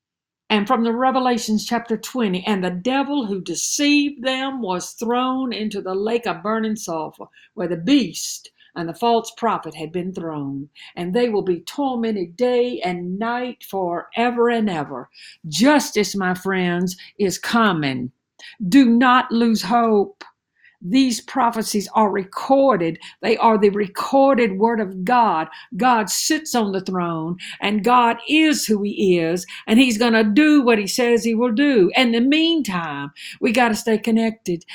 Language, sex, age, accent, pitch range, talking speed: English, female, 60-79, American, 190-245 Hz, 155 wpm